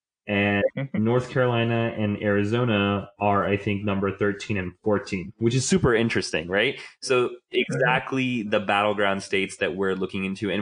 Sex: male